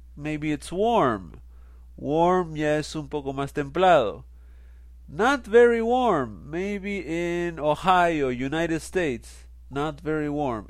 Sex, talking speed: male, 110 wpm